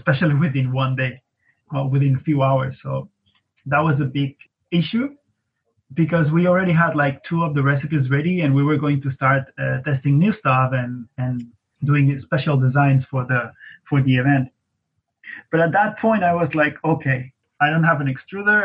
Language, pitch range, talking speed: English, 130-155 Hz, 185 wpm